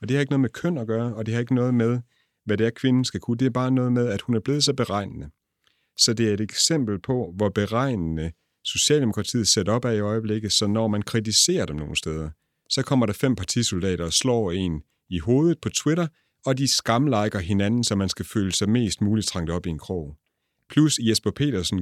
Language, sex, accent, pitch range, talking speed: Danish, male, native, 95-120 Hz, 230 wpm